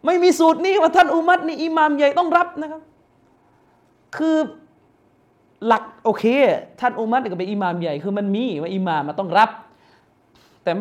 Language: Thai